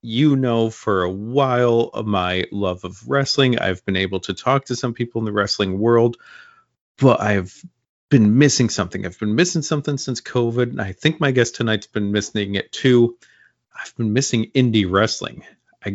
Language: English